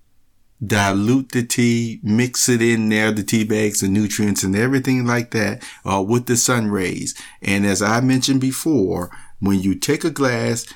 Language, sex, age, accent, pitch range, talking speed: English, male, 50-69, American, 100-125 Hz, 175 wpm